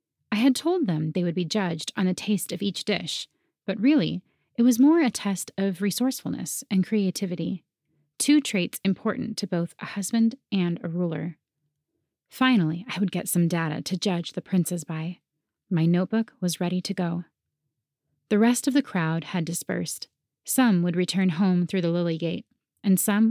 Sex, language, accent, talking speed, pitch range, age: female, English, American, 180 wpm, 170-215 Hz, 30-49